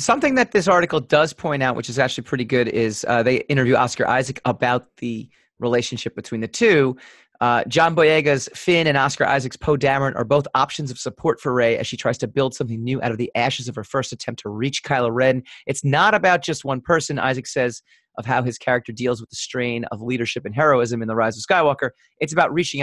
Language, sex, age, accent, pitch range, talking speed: English, male, 30-49, American, 120-155 Hz, 230 wpm